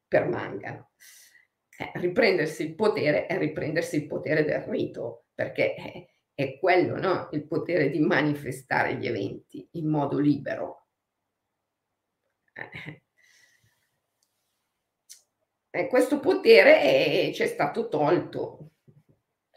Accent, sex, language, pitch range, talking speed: native, female, Italian, 145-175 Hz, 100 wpm